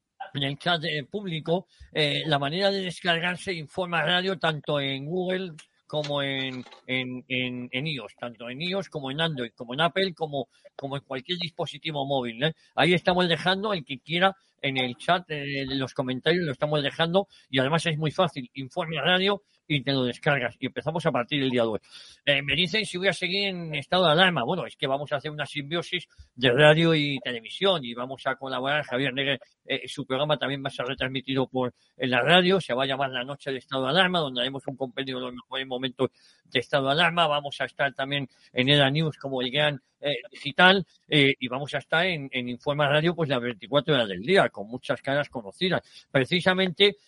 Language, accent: Spanish, Spanish